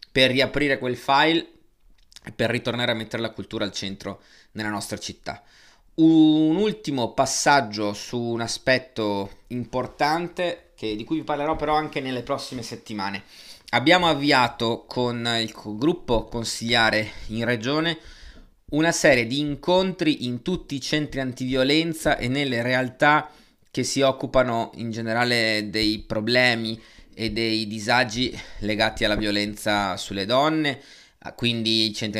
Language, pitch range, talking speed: Italian, 110-135 Hz, 130 wpm